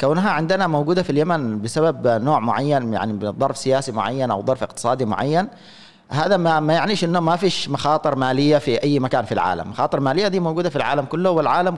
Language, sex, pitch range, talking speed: Arabic, male, 120-170 Hz, 190 wpm